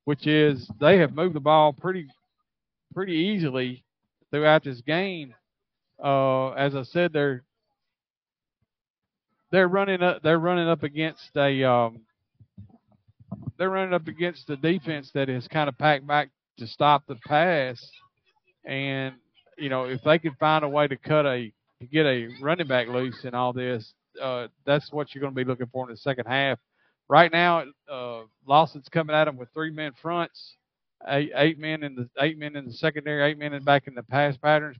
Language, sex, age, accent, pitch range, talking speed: English, male, 50-69, American, 130-160 Hz, 185 wpm